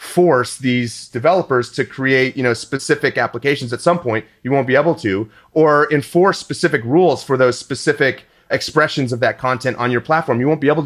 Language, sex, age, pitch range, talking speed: English, male, 30-49, 120-150 Hz, 195 wpm